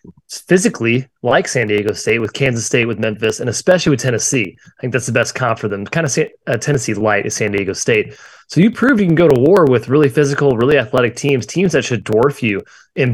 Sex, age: male, 20-39